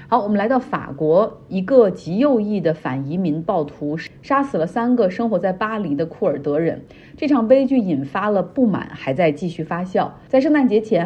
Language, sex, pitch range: Chinese, female, 155-210 Hz